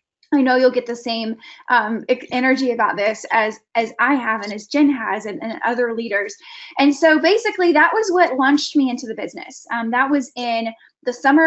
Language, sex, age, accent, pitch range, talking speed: English, female, 10-29, American, 230-280 Hz, 205 wpm